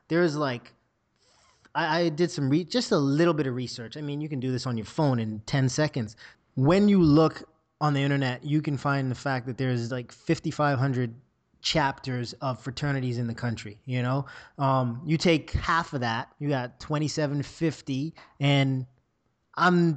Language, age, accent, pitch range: English, 20-39, American, 130-155 Hz